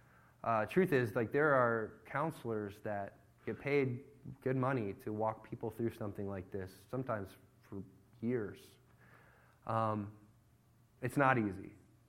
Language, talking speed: English, 130 wpm